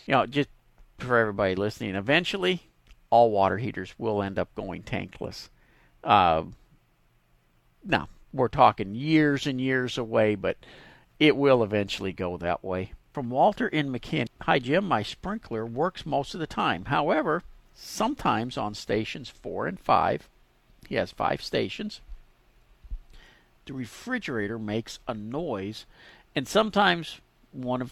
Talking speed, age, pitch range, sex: 135 wpm, 50-69, 105-160 Hz, male